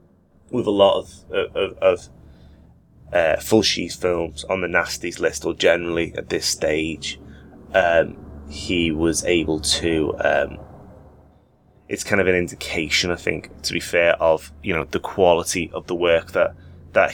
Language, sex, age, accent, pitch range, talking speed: English, male, 20-39, British, 80-100 Hz, 160 wpm